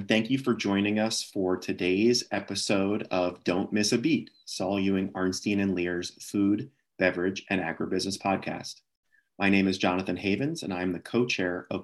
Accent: American